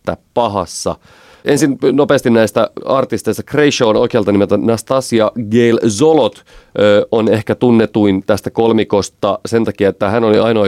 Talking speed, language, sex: 130 wpm, Finnish, male